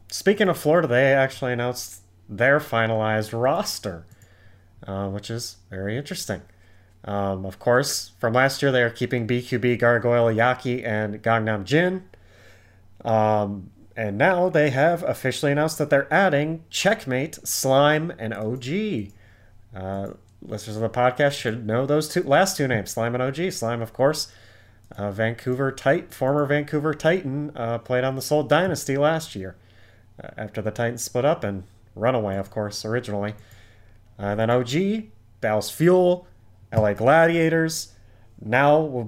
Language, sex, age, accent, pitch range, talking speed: English, male, 30-49, American, 105-140 Hz, 145 wpm